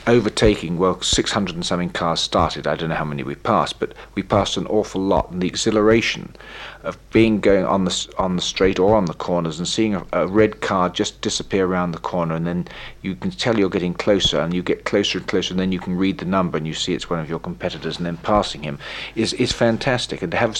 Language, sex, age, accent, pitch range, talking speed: English, male, 50-69, British, 90-105 Hz, 250 wpm